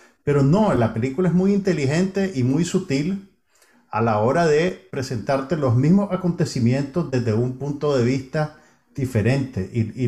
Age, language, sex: 50-69, Spanish, male